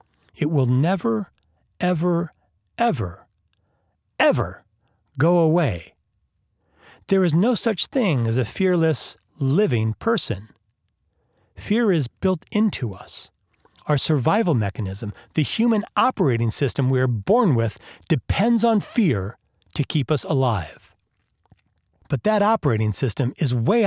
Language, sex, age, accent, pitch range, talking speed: English, male, 40-59, American, 105-175 Hz, 120 wpm